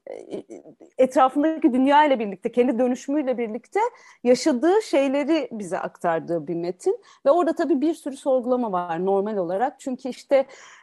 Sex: female